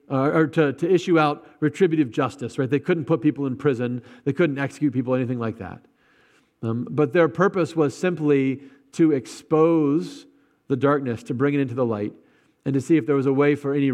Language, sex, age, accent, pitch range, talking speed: English, male, 40-59, American, 130-155 Hz, 205 wpm